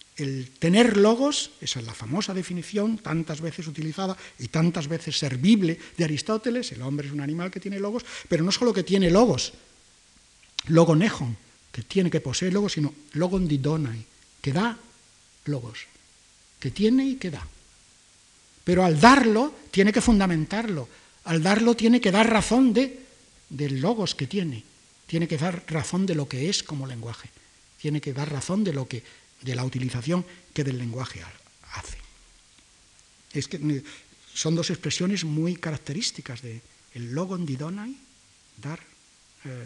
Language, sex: Spanish, male